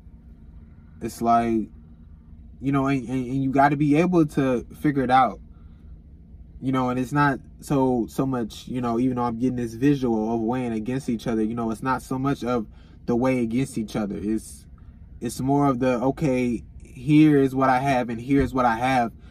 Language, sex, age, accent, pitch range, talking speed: English, male, 20-39, American, 80-125 Hz, 195 wpm